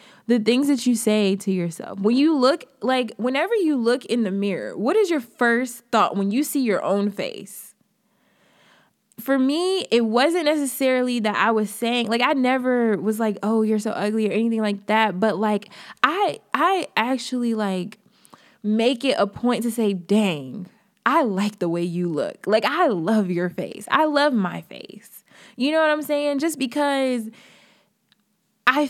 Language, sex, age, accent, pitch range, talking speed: English, female, 20-39, American, 205-260 Hz, 180 wpm